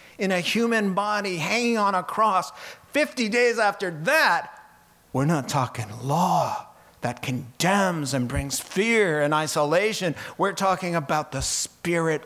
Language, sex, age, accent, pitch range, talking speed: English, male, 50-69, American, 135-185 Hz, 135 wpm